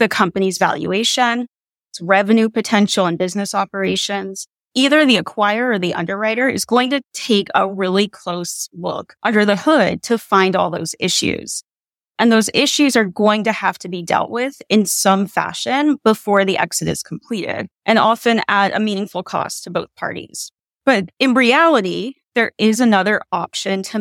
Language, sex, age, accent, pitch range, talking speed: English, female, 30-49, American, 185-235 Hz, 165 wpm